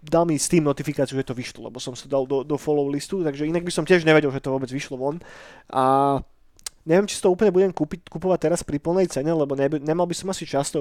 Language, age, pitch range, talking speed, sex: Slovak, 20-39, 140-165 Hz, 255 wpm, male